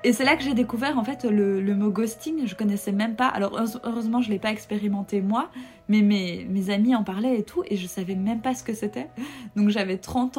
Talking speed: 245 wpm